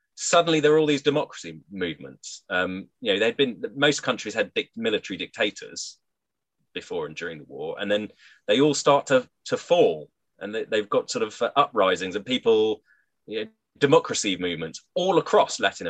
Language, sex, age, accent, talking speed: English, male, 30-49, British, 175 wpm